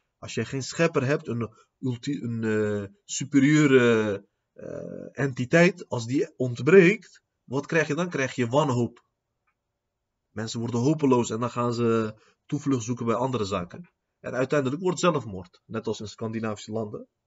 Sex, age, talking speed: male, 30-49, 150 wpm